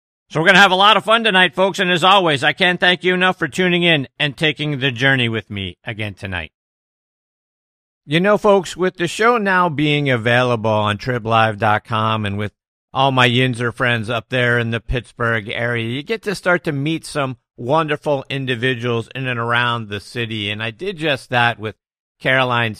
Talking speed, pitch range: 190 wpm, 110-150 Hz